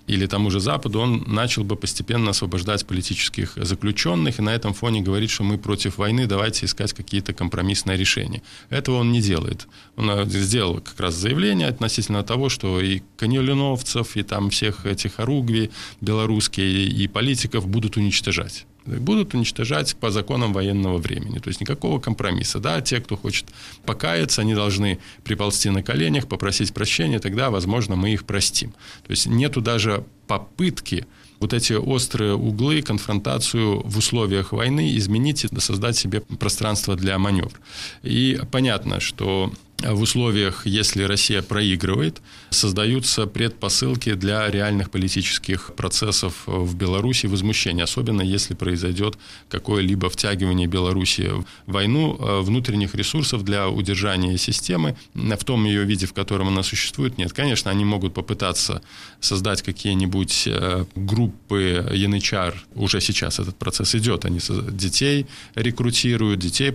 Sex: male